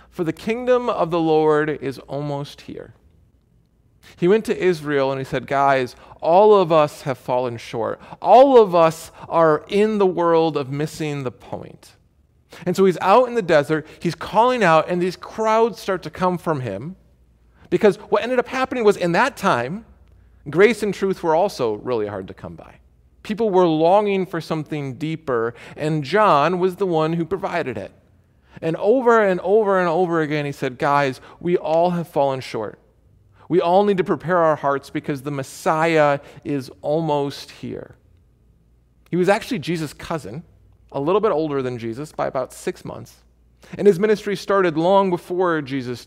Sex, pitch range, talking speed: male, 140-190 Hz, 175 wpm